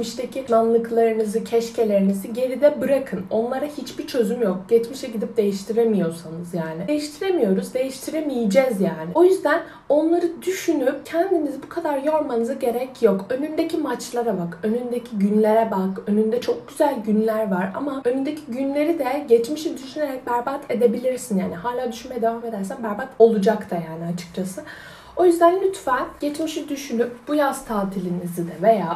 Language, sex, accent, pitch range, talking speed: Turkish, female, native, 200-275 Hz, 135 wpm